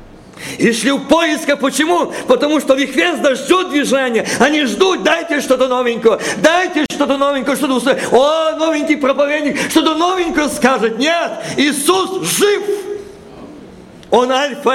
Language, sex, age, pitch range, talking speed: Russian, male, 50-69, 230-310 Hz, 130 wpm